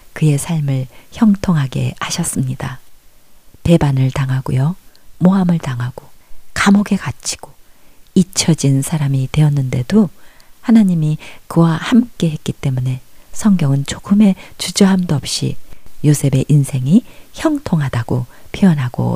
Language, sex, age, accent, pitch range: Korean, female, 40-59, native, 135-190 Hz